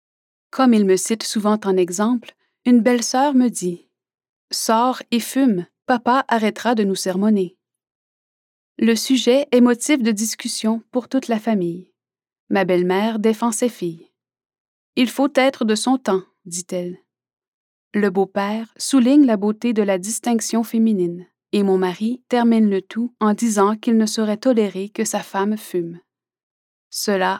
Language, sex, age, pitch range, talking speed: French, female, 30-49, 190-235 Hz, 145 wpm